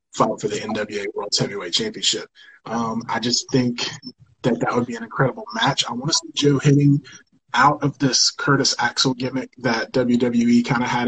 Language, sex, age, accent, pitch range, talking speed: English, male, 20-39, American, 120-140 Hz, 190 wpm